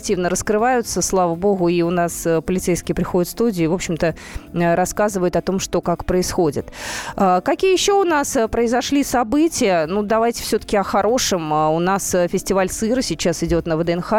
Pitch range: 175-230 Hz